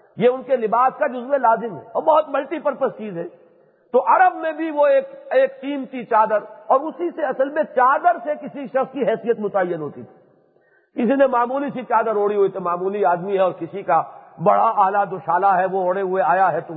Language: English